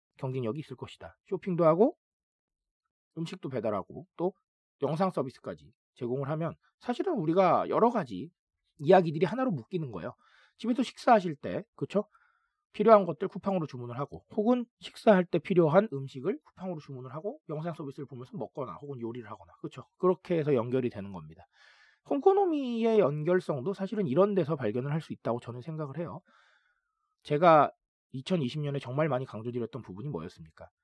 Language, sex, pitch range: Korean, male, 130-200 Hz